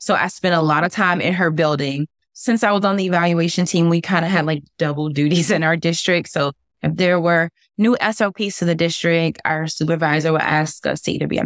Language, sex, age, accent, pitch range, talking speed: English, female, 20-39, American, 155-195 Hz, 230 wpm